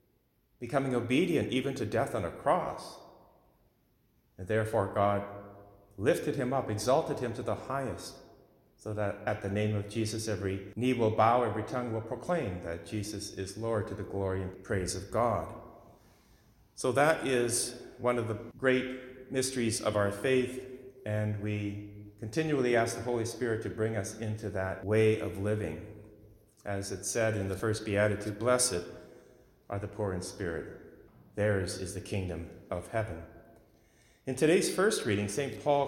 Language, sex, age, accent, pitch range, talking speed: English, male, 40-59, American, 100-120 Hz, 160 wpm